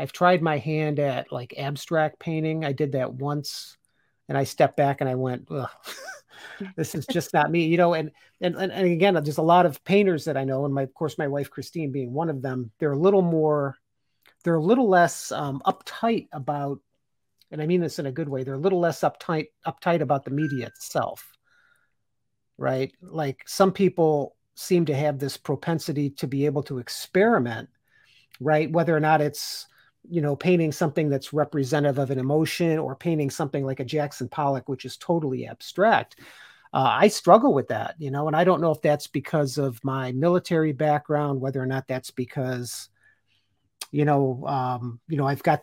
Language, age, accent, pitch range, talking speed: English, 40-59, American, 135-165 Hz, 195 wpm